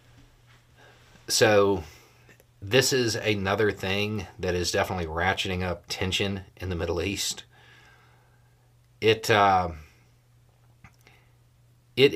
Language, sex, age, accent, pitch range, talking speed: English, male, 40-59, American, 90-120 Hz, 90 wpm